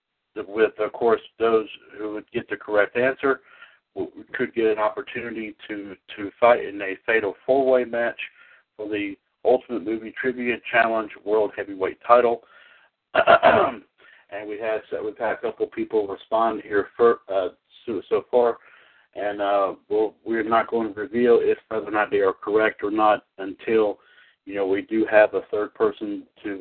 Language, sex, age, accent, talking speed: English, male, 60-79, American, 165 wpm